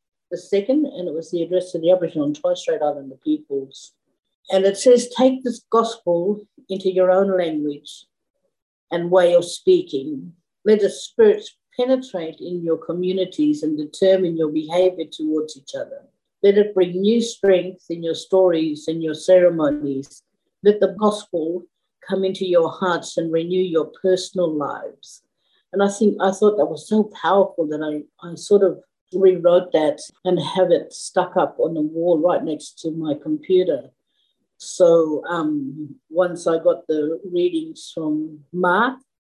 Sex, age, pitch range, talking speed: female, 50-69, 160-205 Hz, 160 wpm